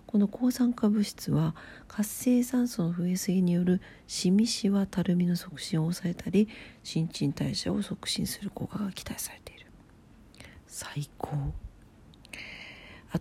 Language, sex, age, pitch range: Japanese, female, 50-69, 155-205 Hz